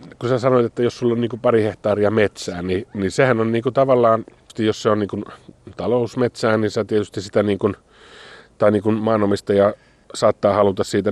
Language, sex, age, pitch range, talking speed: Finnish, male, 30-49, 90-105 Hz, 180 wpm